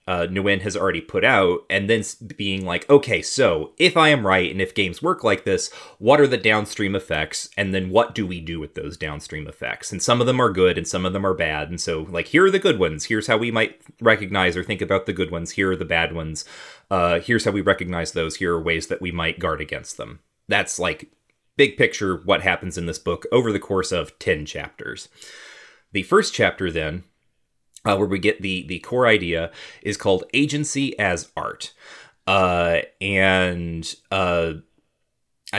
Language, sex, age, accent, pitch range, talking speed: English, male, 30-49, American, 85-110 Hz, 205 wpm